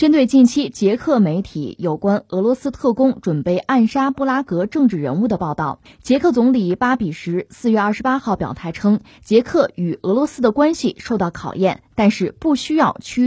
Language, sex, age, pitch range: Chinese, female, 20-39, 180-265 Hz